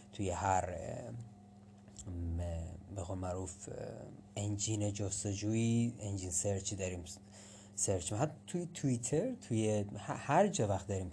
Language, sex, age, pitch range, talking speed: Persian, male, 30-49, 100-115 Hz, 100 wpm